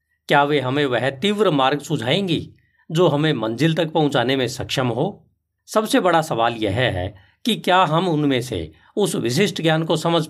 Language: Hindi